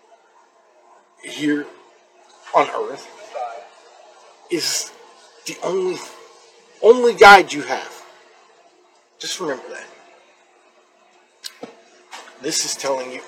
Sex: male